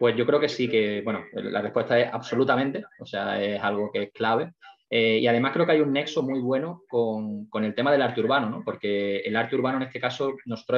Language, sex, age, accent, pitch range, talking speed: Spanish, male, 20-39, Spanish, 105-125 Hz, 245 wpm